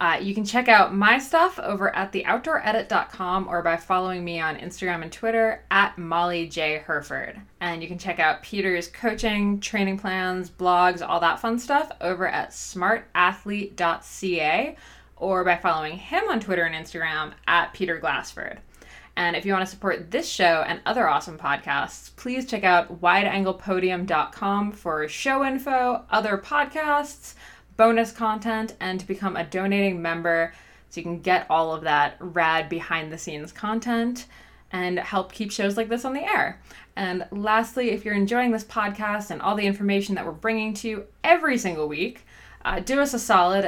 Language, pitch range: English, 170-220 Hz